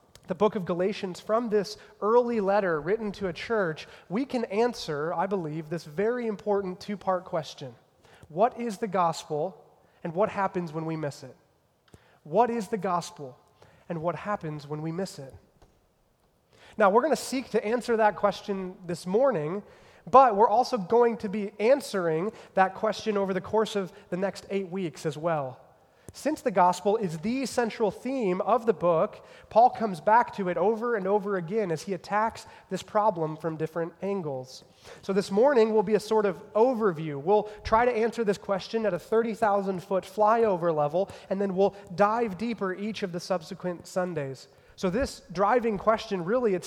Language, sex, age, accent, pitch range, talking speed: English, male, 30-49, American, 170-220 Hz, 175 wpm